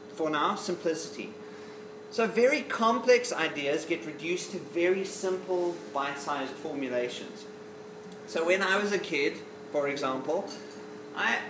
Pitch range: 140-195 Hz